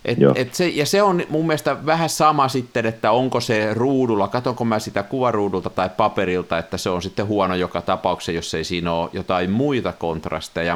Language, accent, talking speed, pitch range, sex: Finnish, native, 200 wpm, 100-150 Hz, male